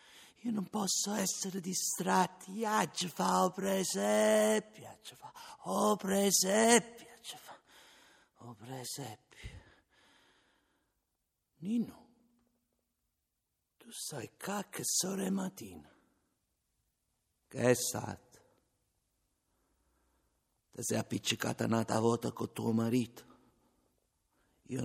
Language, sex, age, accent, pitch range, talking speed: Italian, male, 60-79, native, 125-195 Hz, 90 wpm